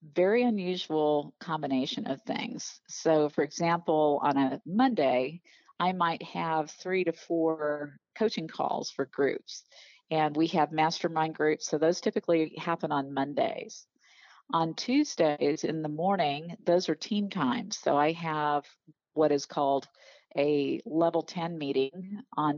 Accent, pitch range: American, 145-175 Hz